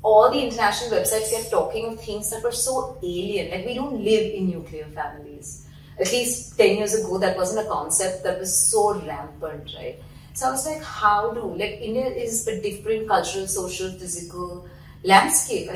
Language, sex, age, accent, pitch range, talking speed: English, female, 30-49, Indian, 180-240 Hz, 185 wpm